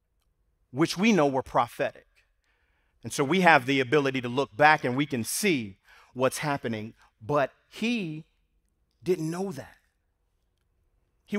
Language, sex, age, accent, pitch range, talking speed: English, male, 40-59, American, 130-195 Hz, 135 wpm